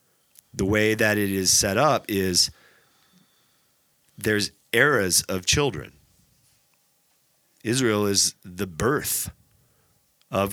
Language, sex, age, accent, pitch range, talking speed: English, male, 30-49, American, 95-120 Hz, 95 wpm